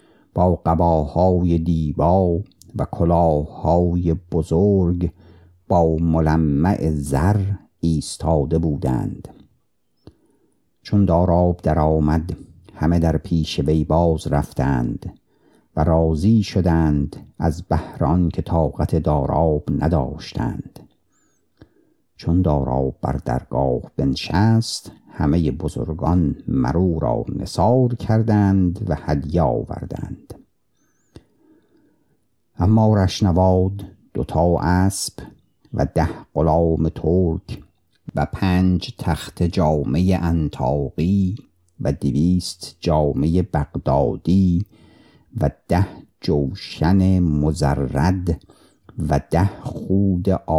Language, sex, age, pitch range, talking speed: Persian, male, 50-69, 80-95 Hz, 80 wpm